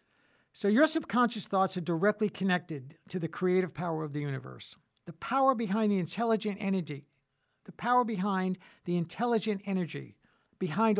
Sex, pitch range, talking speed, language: male, 160-205 Hz, 145 wpm, English